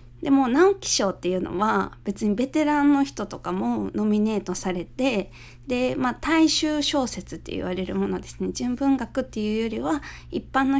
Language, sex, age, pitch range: Japanese, female, 20-39, 190-285 Hz